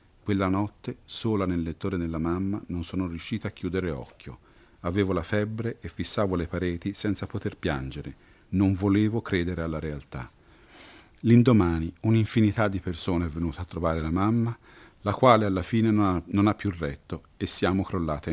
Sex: male